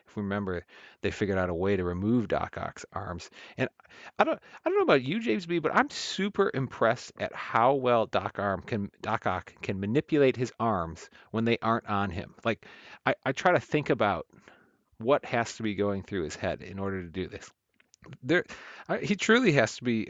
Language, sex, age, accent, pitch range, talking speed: English, male, 40-59, American, 100-135 Hz, 210 wpm